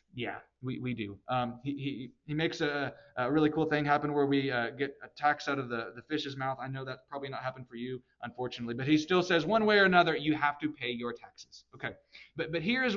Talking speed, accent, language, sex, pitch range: 255 wpm, American, English, male, 140-175 Hz